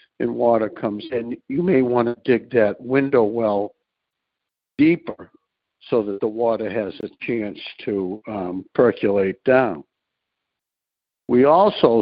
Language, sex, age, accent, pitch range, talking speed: English, male, 60-79, American, 110-140 Hz, 130 wpm